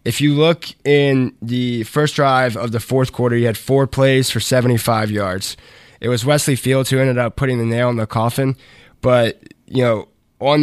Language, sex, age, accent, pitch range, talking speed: English, male, 20-39, American, 115-135 Hz, 200 wpm